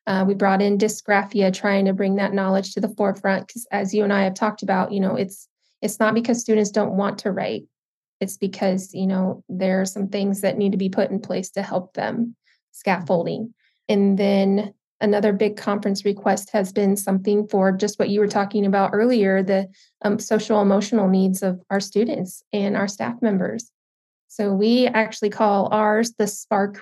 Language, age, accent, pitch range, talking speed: English, 20-39, American, 195-210 Hz, 195 wpm